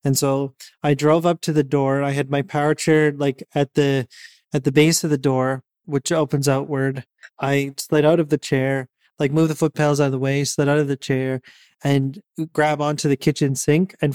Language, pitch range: English, 140-155 Hz